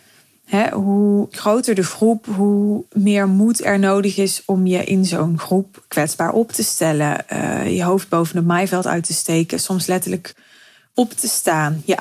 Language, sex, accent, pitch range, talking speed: Dutch, female, Dutch, 175-210 Hz, 165 wpm